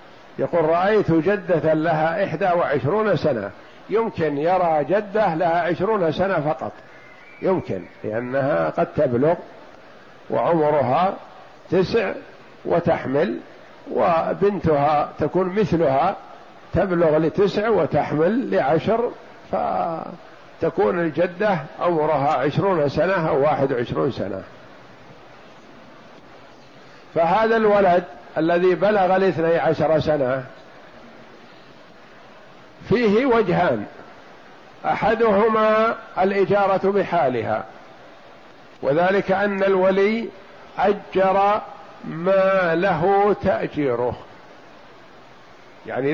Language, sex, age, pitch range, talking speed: Arabic, male, 50-69, 160-200 Hz, 75 wpm